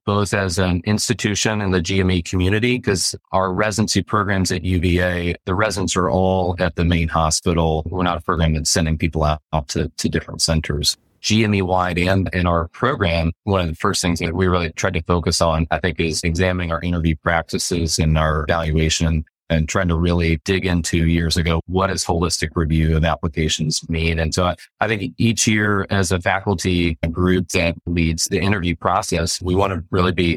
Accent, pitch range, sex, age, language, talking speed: American, 80-95 Hz, male, 30-49, English, 195 wpm